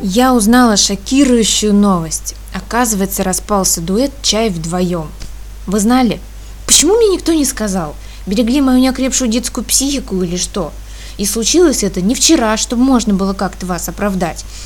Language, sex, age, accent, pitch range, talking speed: Russian, female, 20-39, native, 185-245 Hz, 140 wpm